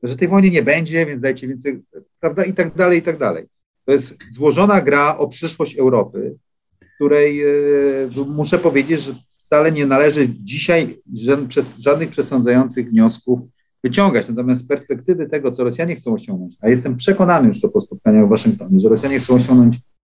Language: Polish